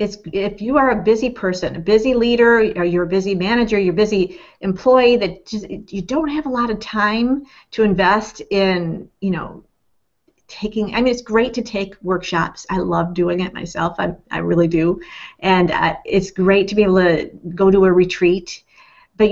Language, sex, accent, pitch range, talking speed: English, female, American, 180-220 Hz, 195 wpm